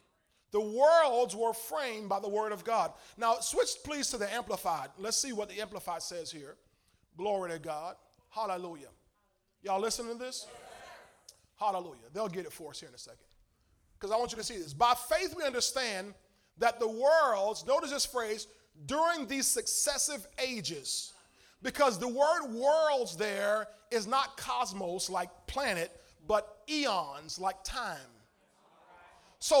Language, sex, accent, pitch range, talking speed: English, male, American, 190-250 Hz, 155 wpm